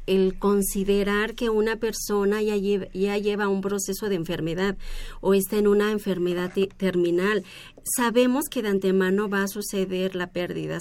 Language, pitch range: Spanish, 185-210 Hz